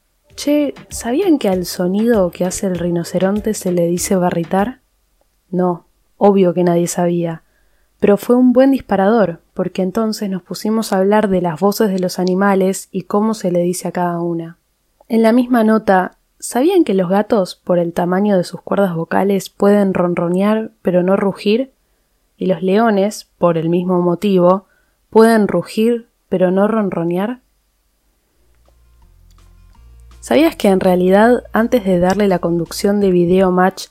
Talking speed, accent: 155 wpm, Argentinian